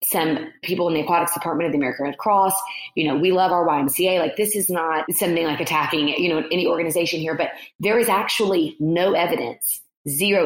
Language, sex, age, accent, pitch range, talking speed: English, female, 30-49, American, 155-190 Hz, 205 wpm